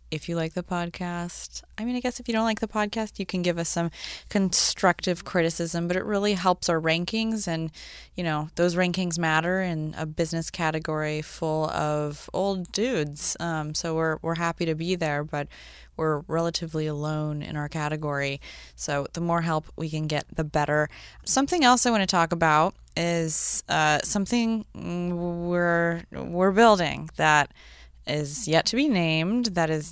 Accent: American